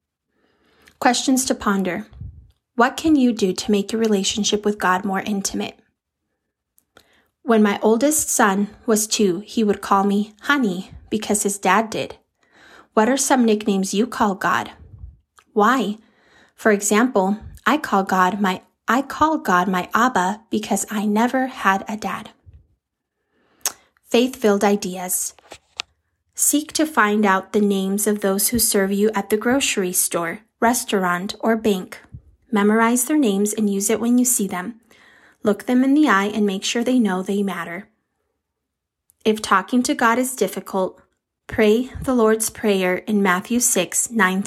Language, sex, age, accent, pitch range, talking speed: English, female, 20-39, American, 195-235 Hz, 150 wpm